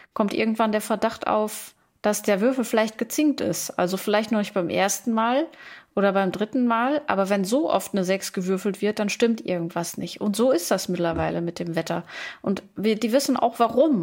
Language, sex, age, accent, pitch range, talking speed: German, female, 30-49, German, 190-225 Hz, 205 wpm